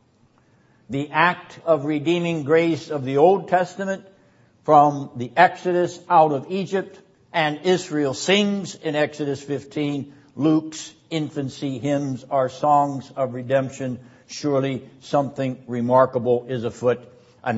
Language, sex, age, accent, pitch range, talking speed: English, male, 60-79, American, 135-175 Hz, 115 wpm